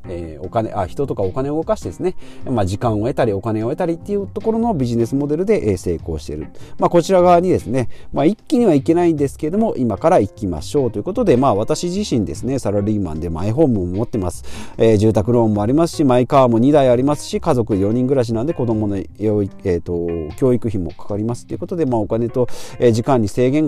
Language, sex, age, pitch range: Japanese, male, 40-59, 105-160 Hz